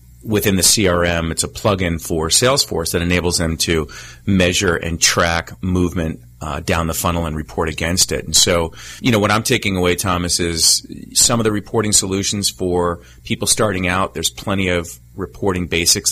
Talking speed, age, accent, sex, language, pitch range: 180 wpm, 30-49, American, male, English, 80-95 Hz